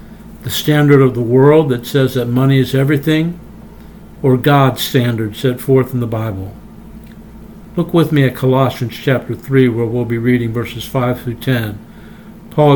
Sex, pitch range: male, 125-145 Hz